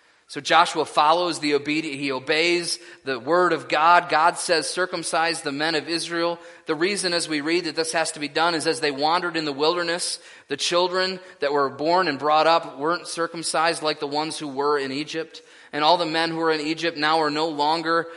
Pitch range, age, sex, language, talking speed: 135-170 Hz, 20-39, male, English, 215 wpm